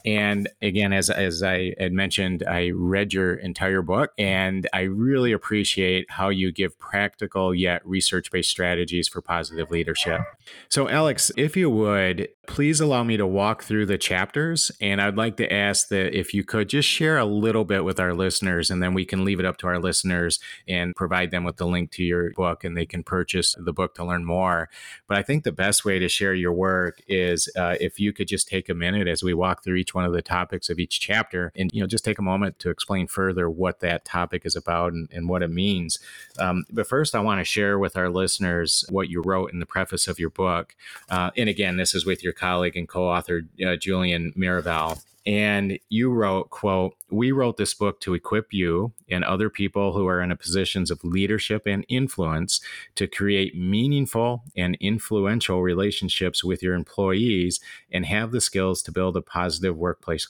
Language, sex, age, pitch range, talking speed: English, male, 30-49, 90-100 Hz, 205 wpm